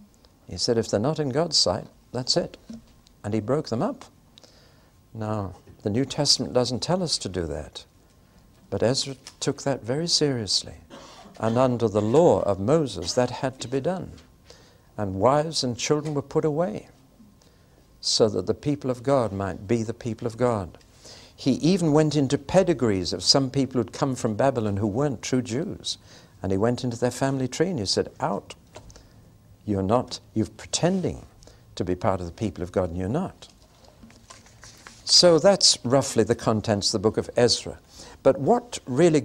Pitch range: 105-145 Hz